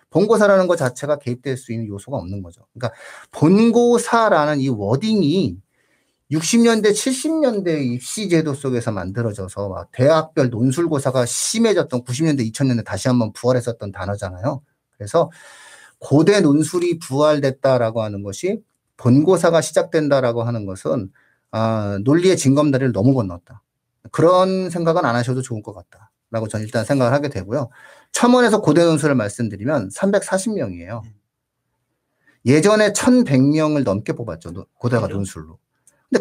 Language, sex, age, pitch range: Korean, male, 40-59, 120-190 Hz